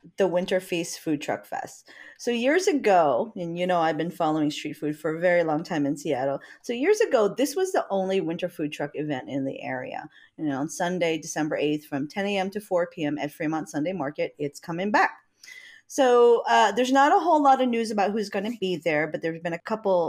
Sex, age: female, 30-49